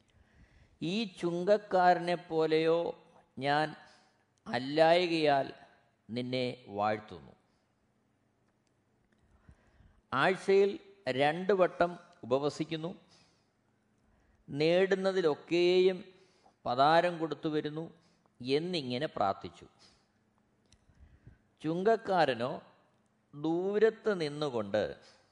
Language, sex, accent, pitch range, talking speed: Malayalam, male, native, 115-170 Hz, 45 wpm